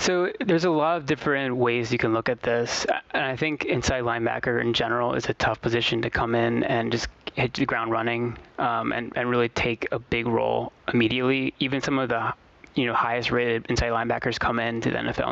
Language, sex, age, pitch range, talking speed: English, male, 20-39, 115-130 Hz, 210 wpm